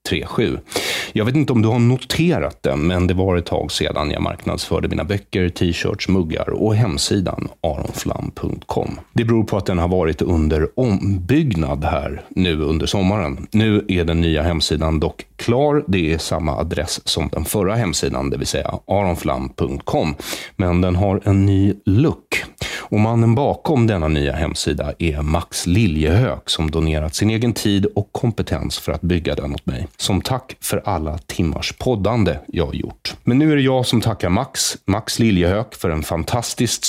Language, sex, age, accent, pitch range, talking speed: English, male, 30-49, Swedish, 85-110 Hz, 170 wpm